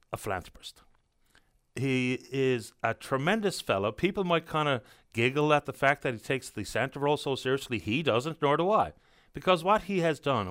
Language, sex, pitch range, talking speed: English, male, 120-155 Hz, 190 wpm